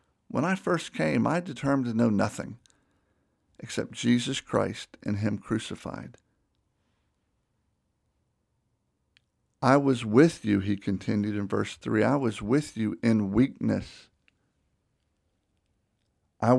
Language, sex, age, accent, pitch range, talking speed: English, male, 50-69, American, 105-135 Hz, 110 wpm